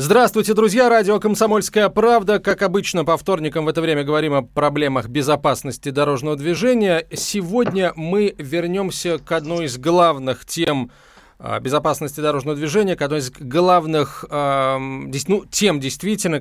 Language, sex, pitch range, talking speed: Russian, male, 140-180 Hz, 130 wpm